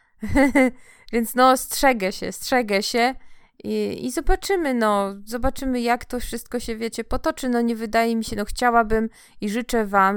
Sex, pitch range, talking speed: female, 200-235 Hz, 160 wpm